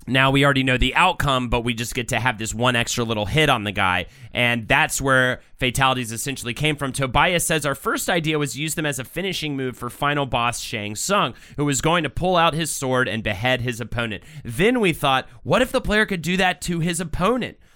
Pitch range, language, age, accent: 120-155 Hz, English, 30-49, American